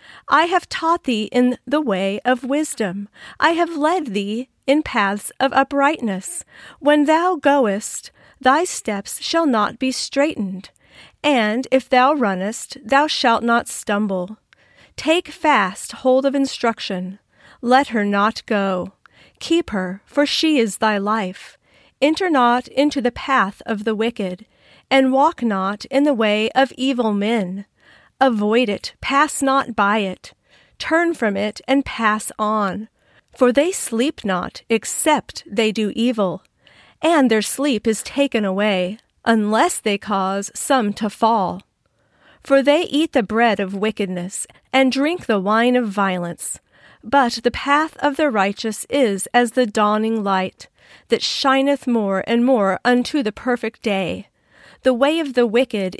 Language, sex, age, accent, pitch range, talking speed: English, female, 40-59, American, 210-275 Hz, 145 wpm